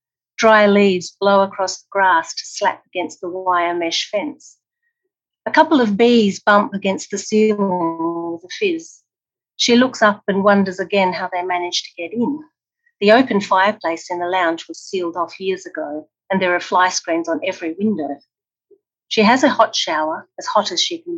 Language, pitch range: English, 180-245 Hz